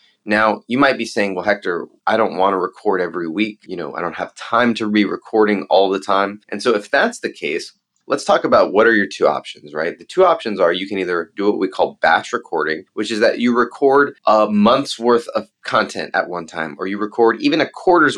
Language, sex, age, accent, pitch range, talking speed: English, male, 30-49, American, 100-125 Hz, 240 wpm